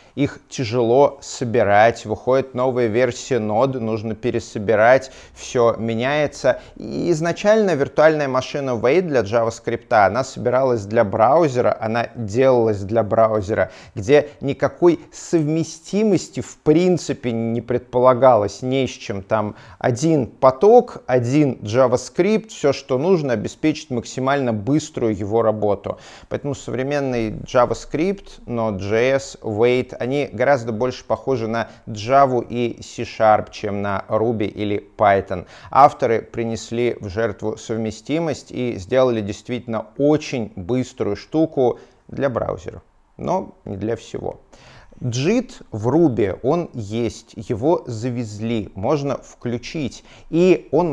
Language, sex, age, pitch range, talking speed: English, male, 30-49, 115-145 Hz, 115 wpm